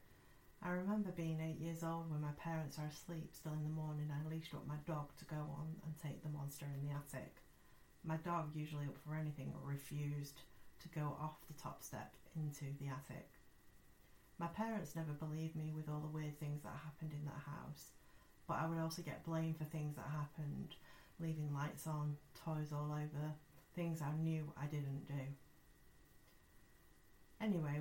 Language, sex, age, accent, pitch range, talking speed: English, female, 30-49, British, 145-165 Hz, 180 wpm